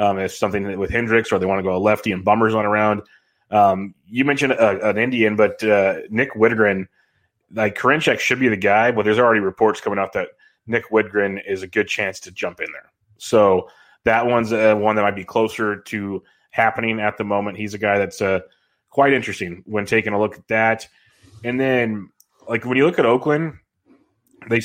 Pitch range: 100-115 Hz